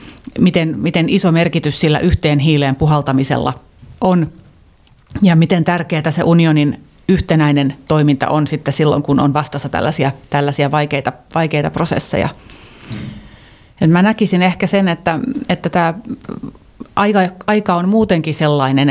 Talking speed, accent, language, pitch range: 125 wpm, native, Finnish, 150-170 Hz